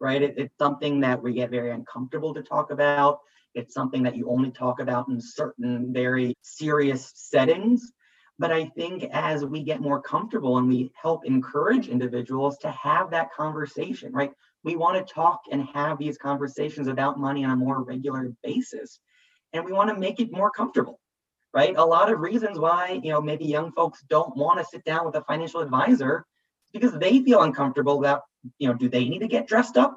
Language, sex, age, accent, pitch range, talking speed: English, male, 30-49, American, 135-185 Hz, 200 wpm